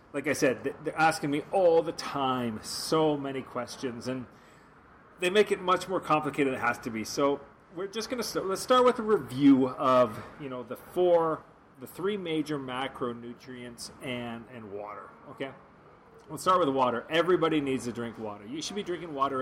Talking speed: 195 wpm